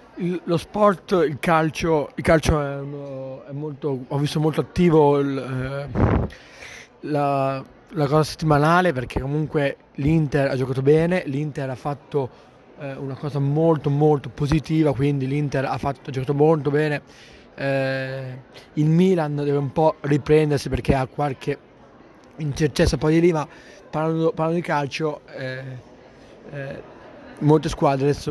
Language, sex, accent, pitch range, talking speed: Italian, male, native, 135-150 Hz, 140 wpm